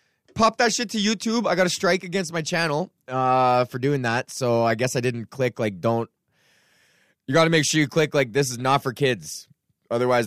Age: 20-39